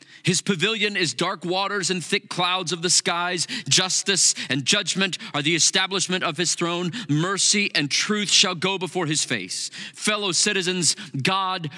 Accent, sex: American, male